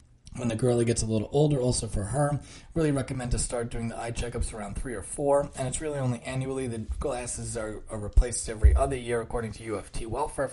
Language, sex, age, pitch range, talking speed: English, male, 20-39, 110-135 Hz, 220 wpm